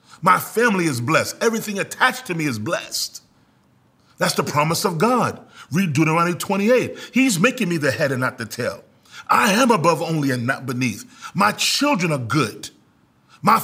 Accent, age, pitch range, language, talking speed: American, 40-59, 140-200 Hz, English, 170 wpm